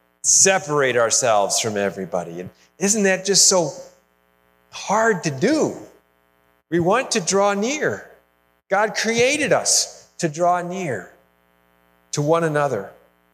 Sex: male